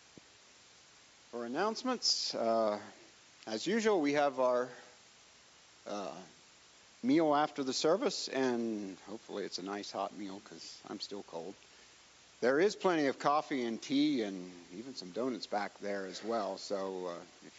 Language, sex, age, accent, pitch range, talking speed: English, male, 50-69, American, 95-125 Hz, 140 wpm